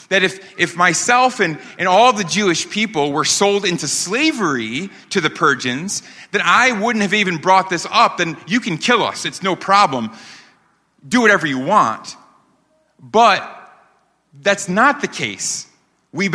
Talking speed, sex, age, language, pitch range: 160 wpm, male, 30-49, English, 130-195 Hz